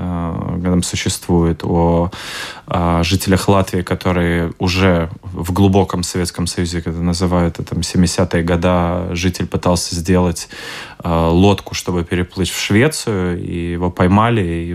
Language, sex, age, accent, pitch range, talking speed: Russian, male, 20-39, native, 85-100 Hz, 120 wpm